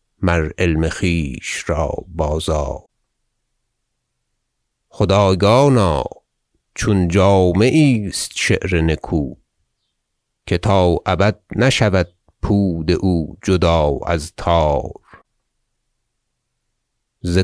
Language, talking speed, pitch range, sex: Persian, 70 wpm, 95-120 Hz, male